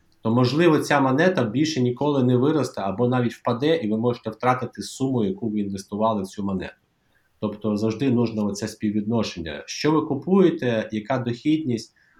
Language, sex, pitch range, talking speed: Russian, male, 105-125 Hz, 160 wpm